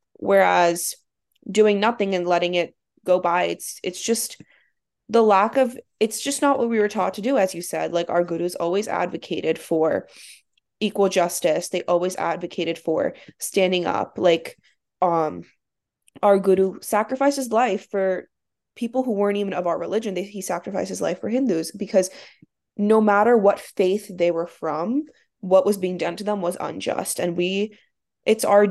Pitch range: 175-215 Hz